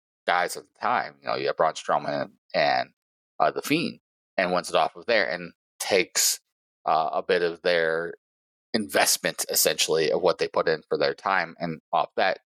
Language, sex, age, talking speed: English, male, 30-49, 195 wpm